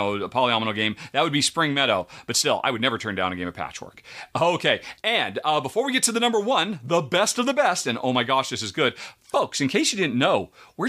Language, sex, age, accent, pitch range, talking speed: English, male, 40-59, American, 120-165 Hz, 265 wpm